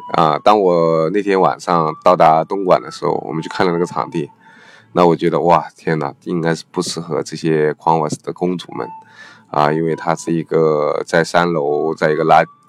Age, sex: 20-39, male